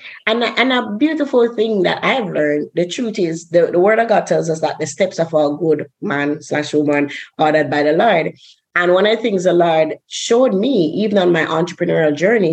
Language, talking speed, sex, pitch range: English, 215 wpm, female, 155-195 Hz